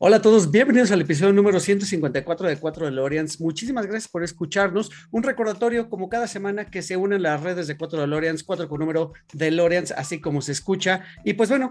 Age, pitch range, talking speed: 40-59, 160-200 Hz, 215 wpm